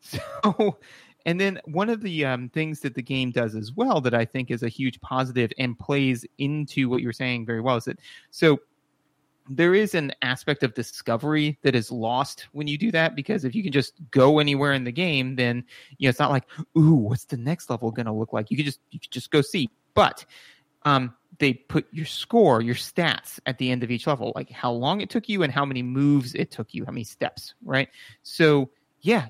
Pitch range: 130-155 Hz